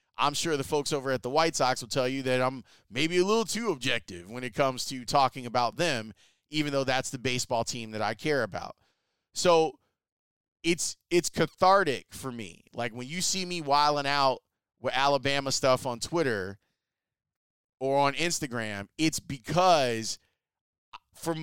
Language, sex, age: English, male, 30-49